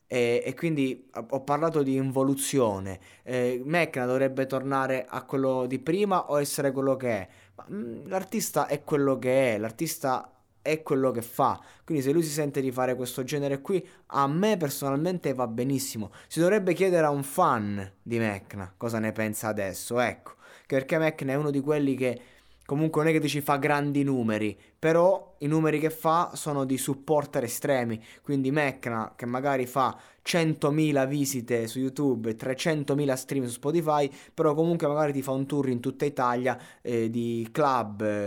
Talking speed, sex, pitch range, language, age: 175 wpm, male, 120-150 Hz, Italian, 20-39